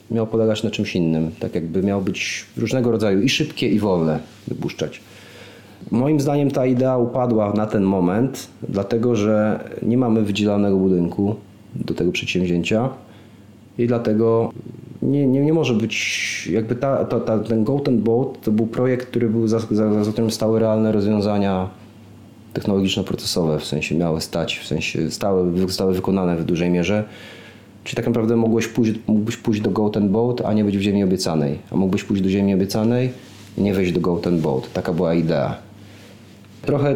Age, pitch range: 30-49, 90-115 Hz